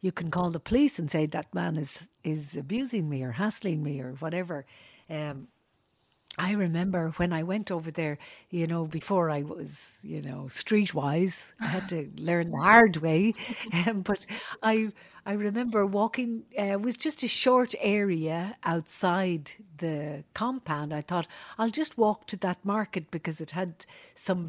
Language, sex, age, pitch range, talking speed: English, female, 60-79, 160-215 Hz, 170 wpm